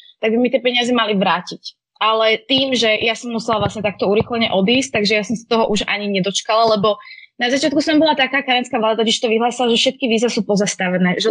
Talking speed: 220 wpm